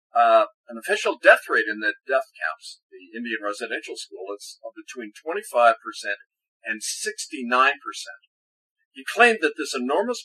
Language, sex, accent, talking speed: English, male, American, 140 wpm